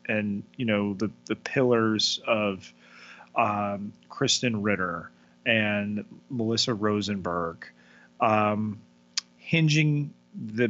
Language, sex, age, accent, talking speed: English, male, 30-49, American, 90 wpm